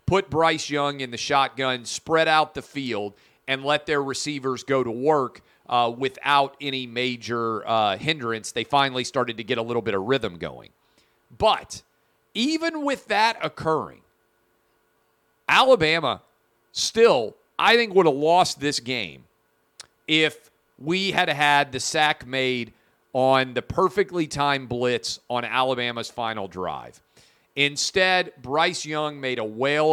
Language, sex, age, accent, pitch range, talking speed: English, male, 40-59, American, 125-155 Hz, 140 wpm